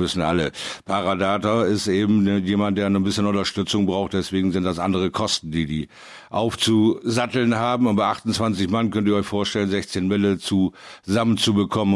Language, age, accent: German, 50-69, German